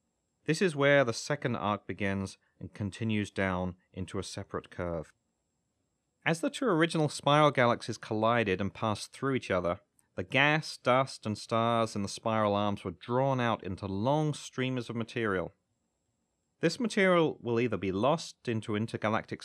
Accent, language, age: British, English, 30-49